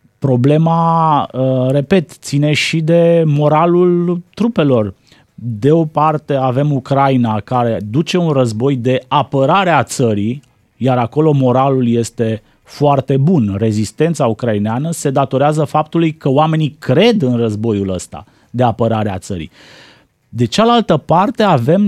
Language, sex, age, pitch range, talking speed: Romanian, male, 30-49, 120-165 Hz, 125 wpm